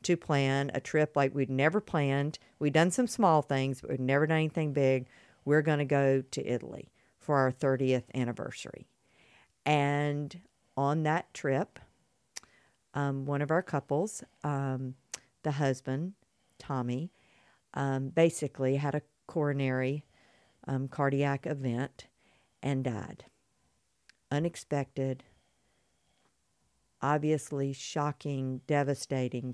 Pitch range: 135-155 Hz